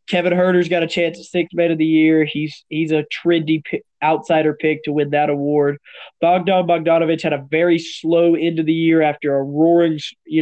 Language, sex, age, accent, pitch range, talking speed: English, male, 20-39, American, 150-170 Hz, 215 wpm